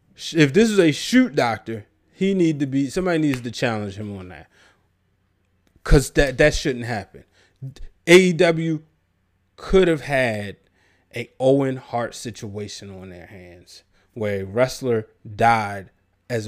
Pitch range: 100-145 Hz